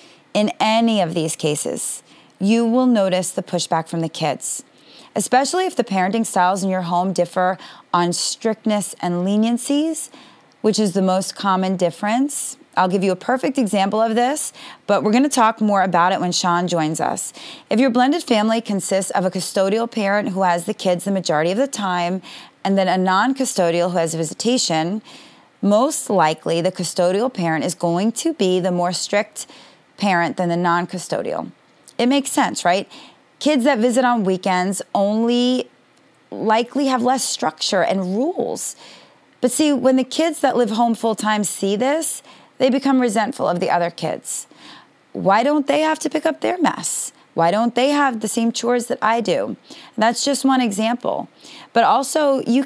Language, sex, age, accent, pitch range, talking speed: English, female, 30-49, American, 185-260 Hz, 175 wpm